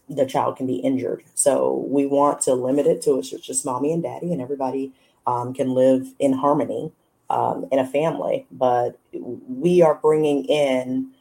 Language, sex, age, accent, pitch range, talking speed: English, female, 30-49, American, 125-150 Hz, 180 wpm